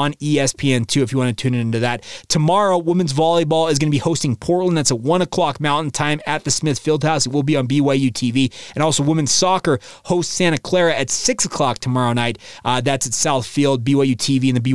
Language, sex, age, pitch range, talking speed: English, male, 20-39, 130-175 Hz, 225 wpm